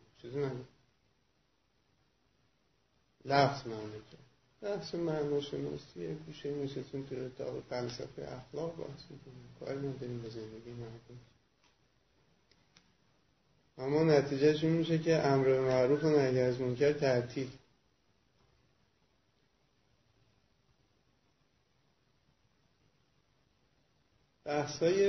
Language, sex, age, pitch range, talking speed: Persian, male, 30-49, 120-145 Hz, 85 wpm